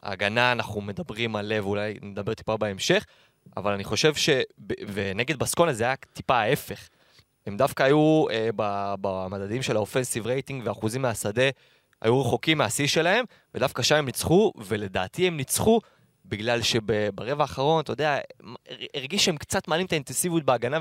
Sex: male